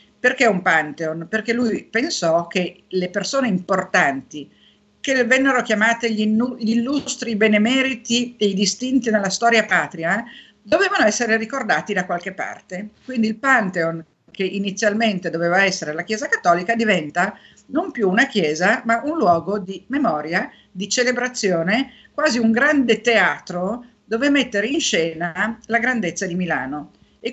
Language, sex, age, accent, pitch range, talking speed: Italian, female, 50-69, native, 180-235 Hz, 140 wpm